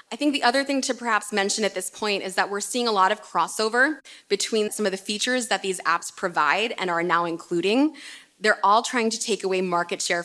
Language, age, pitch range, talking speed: English, 20-39, 185-225 Hz, 235 wpm